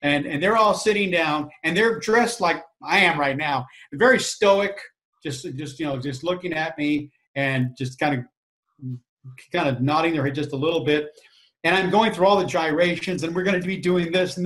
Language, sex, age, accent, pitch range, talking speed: English, male, 50-69, American, 145-195 Hz, 215 wpm